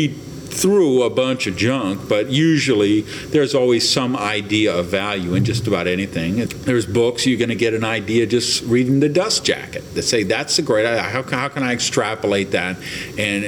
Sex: male